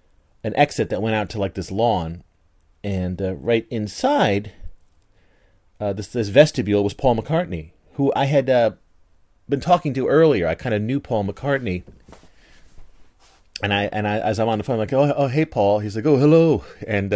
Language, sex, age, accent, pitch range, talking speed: English, male, 30-49, American, 85-115 Hz, 190 wpm